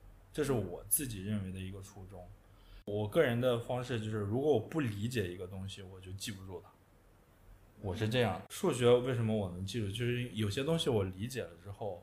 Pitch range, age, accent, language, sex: 95-115 Hz, 20-39, native, Chinese, male